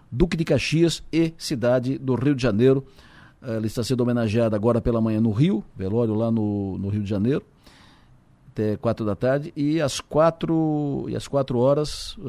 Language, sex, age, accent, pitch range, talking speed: Portuguese, male, 50-69, Brazilian, 110-135 Hz, 175 wpm